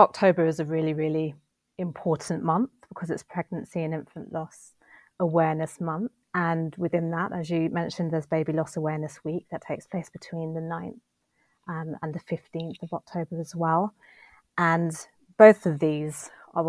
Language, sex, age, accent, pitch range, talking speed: English, female, 30-49, British, 155-175 Hz, 160 wpm